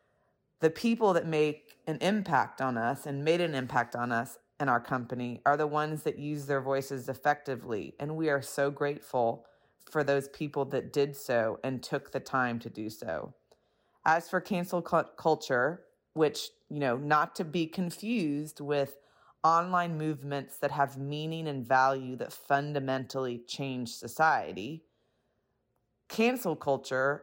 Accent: American